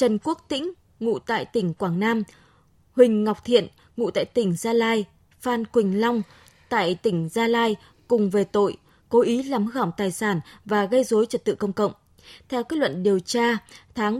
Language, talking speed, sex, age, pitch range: Vietnamese, 190 wpm, female, 20-39, 205-250 Hz